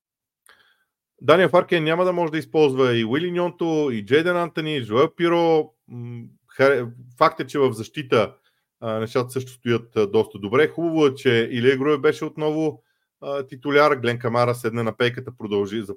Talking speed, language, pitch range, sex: 145 wpm, Bulgarian, 115-150 Hz, male